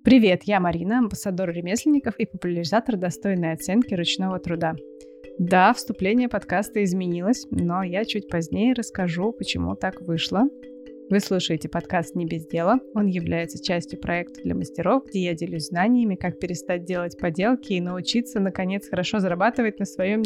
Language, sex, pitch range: Russian, female, 175-220 Hz